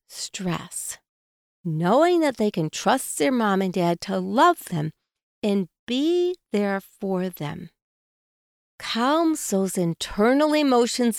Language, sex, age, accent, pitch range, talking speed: English, female, 50-69, American, 185-260 Hz, 120 wpm